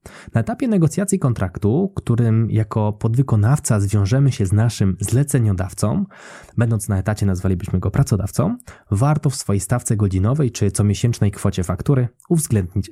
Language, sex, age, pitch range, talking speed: Polish, male, 20-39, 100-140 Hz, 130 wpm